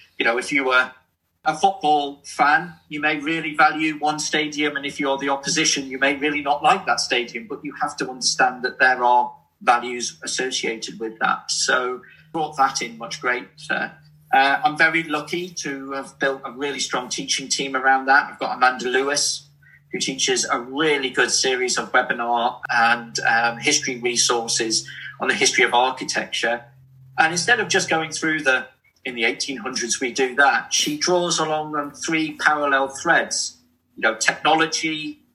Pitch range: 130-155 Hz